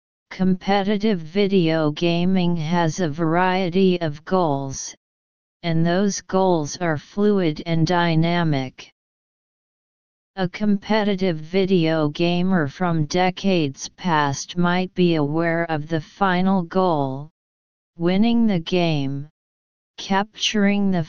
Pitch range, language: 150-195 Hz, English